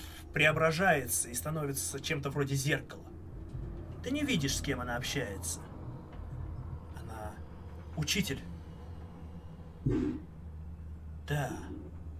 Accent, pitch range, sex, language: native, 80-125 Hz, male, Russian